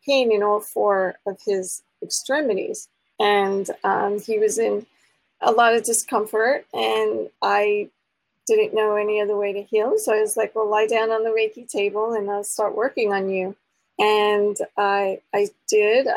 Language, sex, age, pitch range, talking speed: English, female, 40-59, 205-255 Hz, 170 wpm